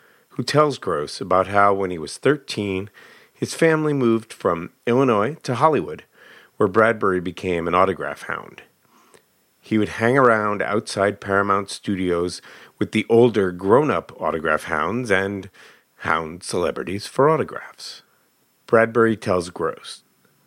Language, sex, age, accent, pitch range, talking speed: English, male, 50-69, American, 95-120 Hz, 125 wpm